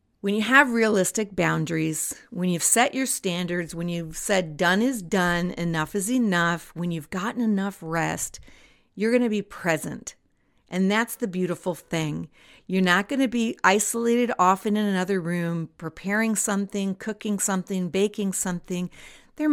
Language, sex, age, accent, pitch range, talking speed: English, female, 50-69, American, 180-230 Hz, 150 wpm